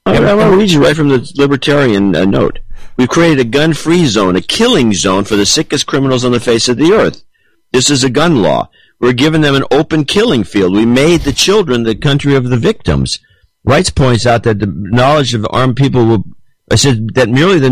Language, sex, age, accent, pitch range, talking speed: English, male, 50-69, American, 115-140 Hz, 220 wpm